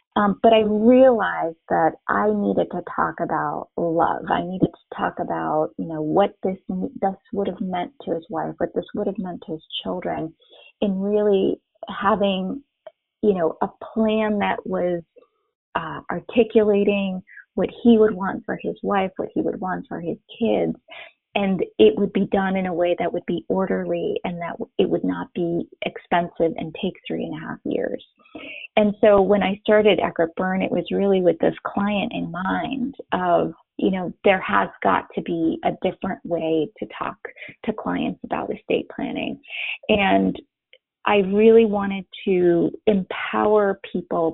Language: English